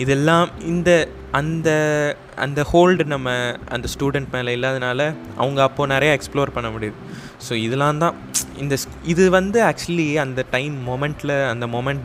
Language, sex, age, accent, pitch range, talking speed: Tamil, male, 20-39, native, 115-140 Hz, 140 wpm